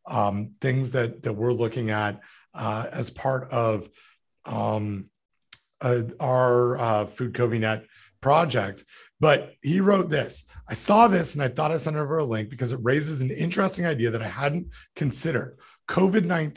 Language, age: English, 40-59